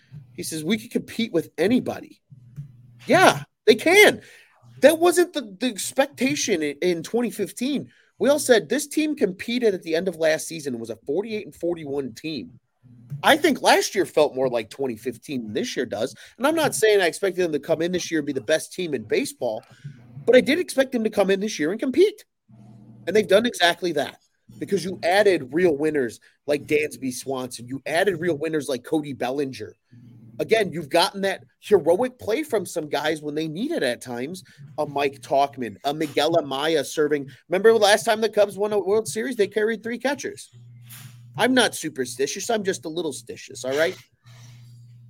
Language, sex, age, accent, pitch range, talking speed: English, male, 30-49, American, 130-215 Hz, 190 wpm